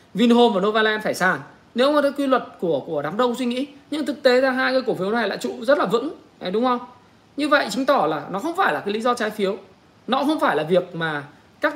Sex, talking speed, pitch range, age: male, 270 wpm, 180-260 Hz, 20-39